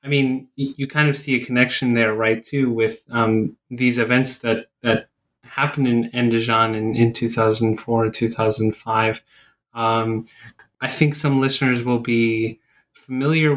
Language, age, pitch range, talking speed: English, 20-39, 115-130 Hz, 140 wpm